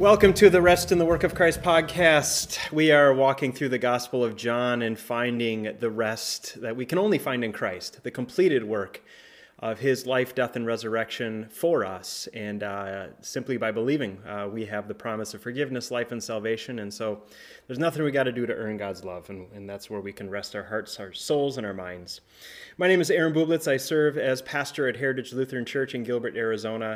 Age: 30-49